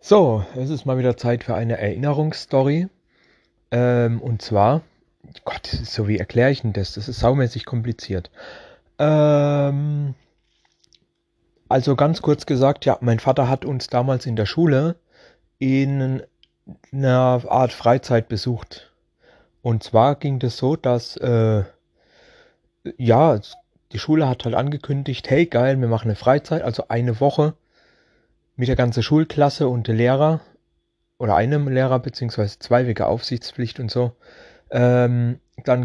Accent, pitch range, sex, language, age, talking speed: German, 115-145 Hz, male, German, 30-49, 140 wpm